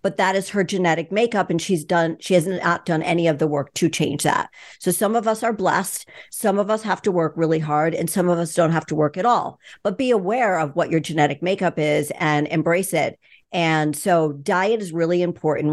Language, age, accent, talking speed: English, 50-69, American, 235 wpm